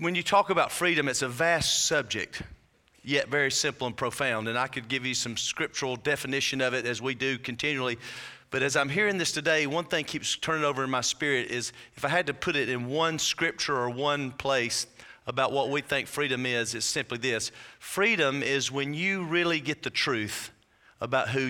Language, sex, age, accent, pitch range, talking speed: English, male, 40-59, American, 125-160 Hz, 205 wpm